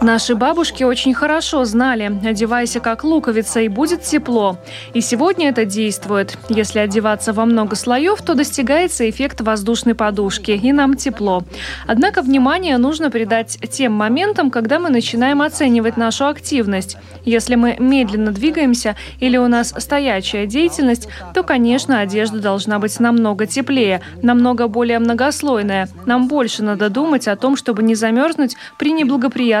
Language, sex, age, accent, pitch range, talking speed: Russian, female, 20-39, native, 220-270 Hz, 140 wpm